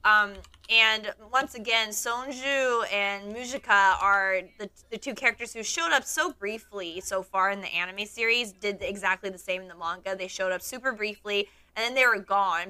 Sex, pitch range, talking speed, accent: female, 190-230 Hz, 195 wpm, American